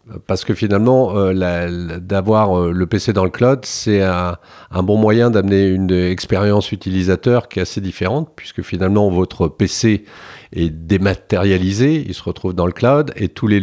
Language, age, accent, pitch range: French, 50-69, French, 90-105 Hz